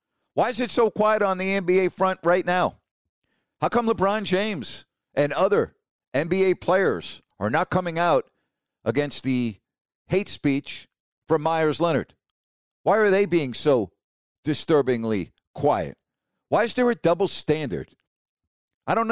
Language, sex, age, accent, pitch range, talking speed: English, male, 50-69, American, 135-185 Hz, 140 wpm